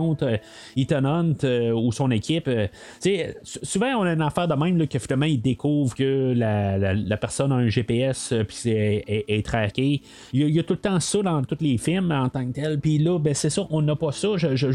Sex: male